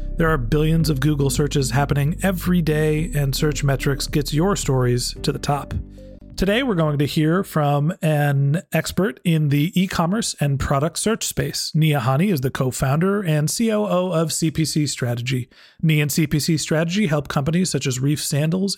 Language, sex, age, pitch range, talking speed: English, male, 40-59, 140-175 Hz, 170 wpm